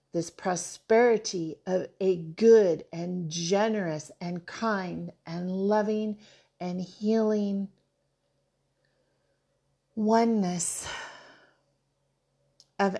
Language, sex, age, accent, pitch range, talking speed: English, female, 40-59, American, 160-220 Hz, 70 wpm